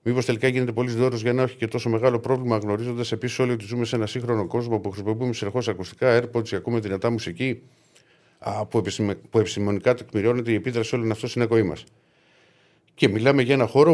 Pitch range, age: 105-130 Hz, 50-69